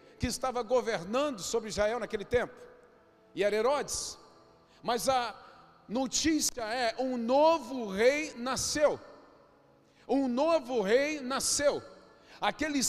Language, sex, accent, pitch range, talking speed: Portuguese, male, Brazilian, 225-270 Hz, 105 wpm